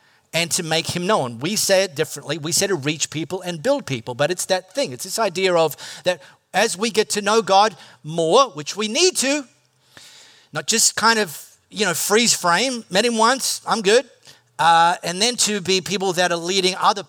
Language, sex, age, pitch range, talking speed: English, male, 40-59, 155-215 Hz, 210 wpm